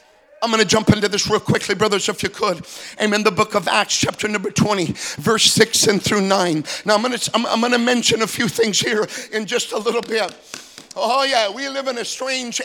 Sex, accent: male, American